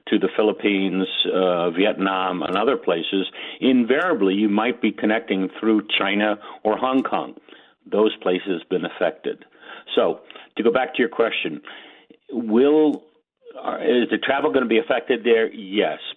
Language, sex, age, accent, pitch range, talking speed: English, male, 60-79, American, 95-130 Hz, 150 wpm